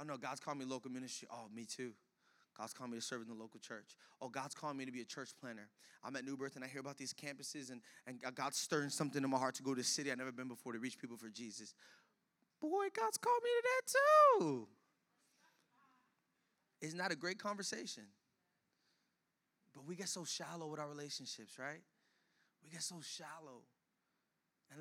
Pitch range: 130-180 Hz